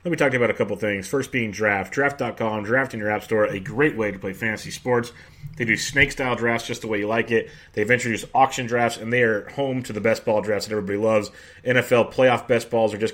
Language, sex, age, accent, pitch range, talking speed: English, male, 30-49, American, 110-135 Hz, 265 wpm